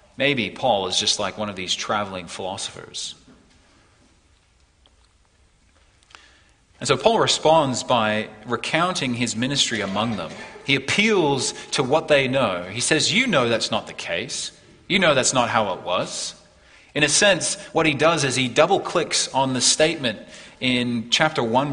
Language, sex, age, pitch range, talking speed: English, male, 30-49, 115-160 Hz, 155 wpm